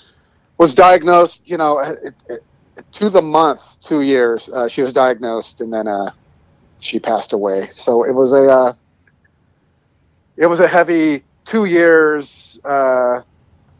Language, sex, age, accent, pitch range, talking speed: English, male, 40-59, American, 115-140 Hz, 145 wpm